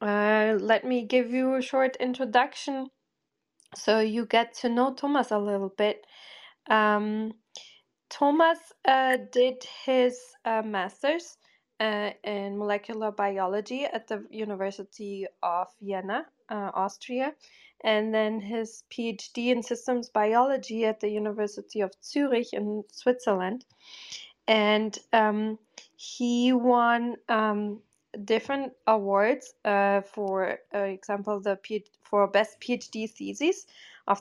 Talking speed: 120 wpm